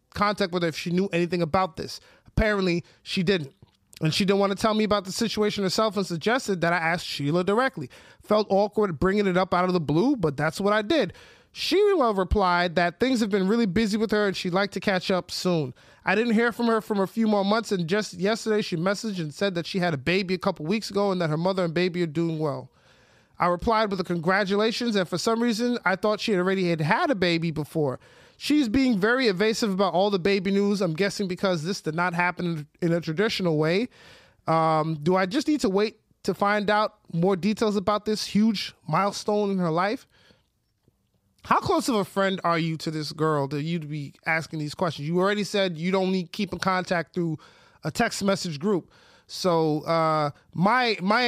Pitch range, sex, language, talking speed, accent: 170-210 Hz, male, English, 220 wpm, American